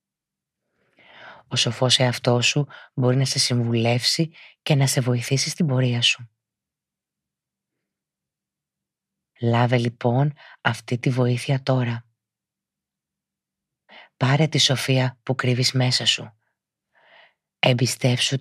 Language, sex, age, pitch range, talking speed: Greek, female, 30-49, 115-135 Hz, 95 wpm